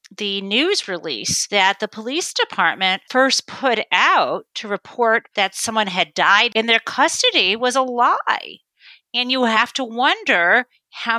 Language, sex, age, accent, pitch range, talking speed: English, female, 40-59, American, 200-270 Hz, 150 wpm